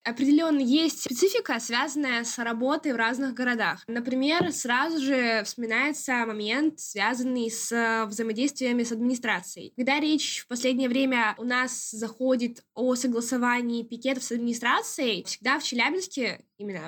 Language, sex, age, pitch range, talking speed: Russian, female, 10-29, 230-275 Hz, 130 wpm